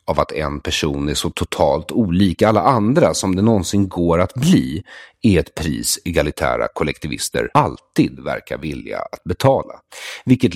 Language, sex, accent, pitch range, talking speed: English, male, Swedish, 80-120 Hz, 155 wpm